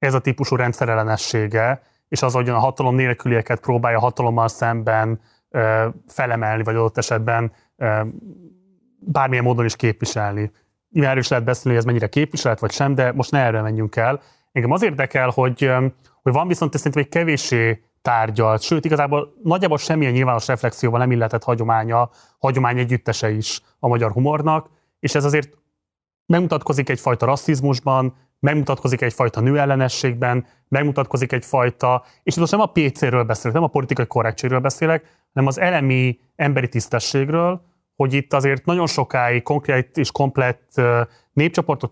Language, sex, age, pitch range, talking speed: Hungarian, male, 30-49, 115-145 Hz, 145 wpm